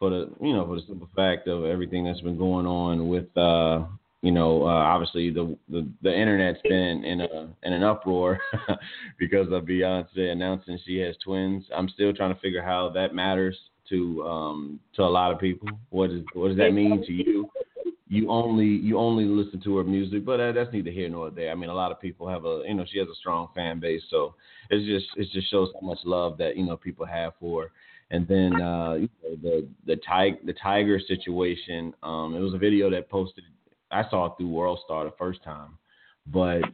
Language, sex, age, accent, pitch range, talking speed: English, male, 30-49, American, 85-95 Hz, 215 wpm